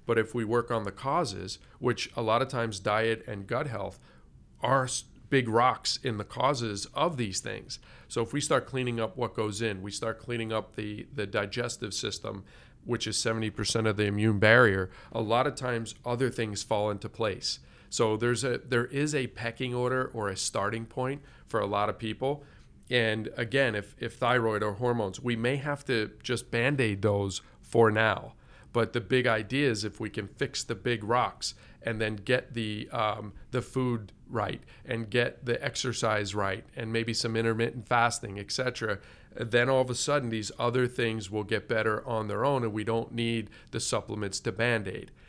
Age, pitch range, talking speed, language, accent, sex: 40-59, 105-125 Hz, 190 wpm, English, American, male